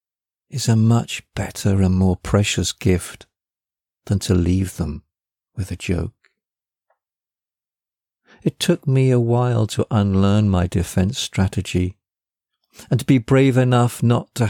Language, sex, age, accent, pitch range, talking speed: English, male, 50-69, British, 95-115 Hz, 135 wpm